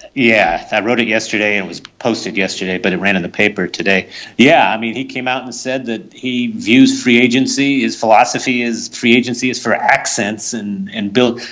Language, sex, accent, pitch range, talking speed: English, male, American, 100-120 Hz, 215 wpm